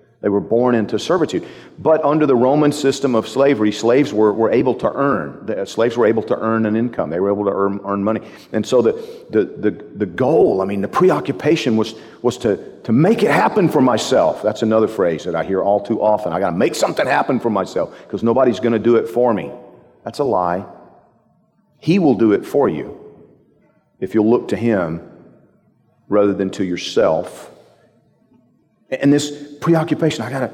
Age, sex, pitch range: 40-59, male, 110-140 Hz